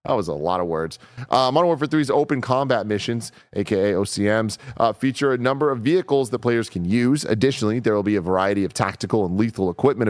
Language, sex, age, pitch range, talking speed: English, male, 30-49, 105-140 Hz, 215 wpm